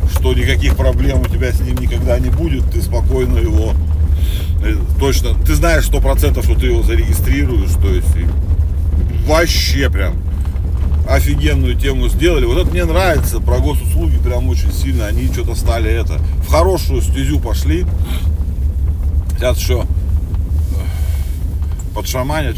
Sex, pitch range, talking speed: male, 75-80 Hz, 130 wpm